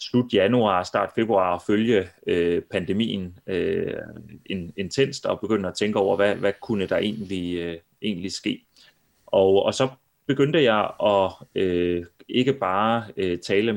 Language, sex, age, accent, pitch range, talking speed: Danish, male, 30-49, native, 90-105 Hz, 145 wpm